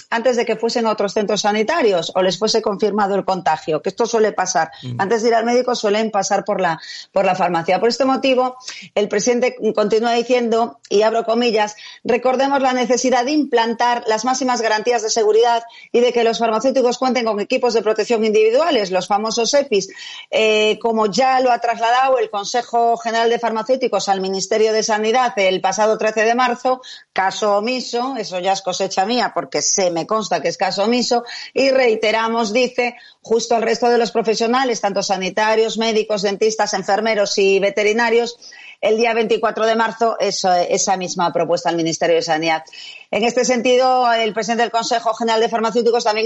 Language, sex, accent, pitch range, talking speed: Spanish, female, Spanish, 200-240 Hz, 180 wpm